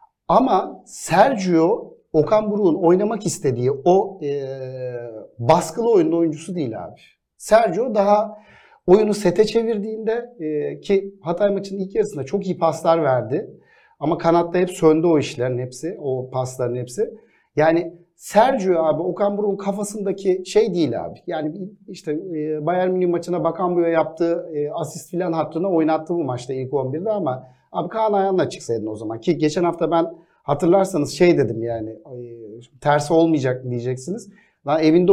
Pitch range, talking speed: 140-195 Hz, 145 wpm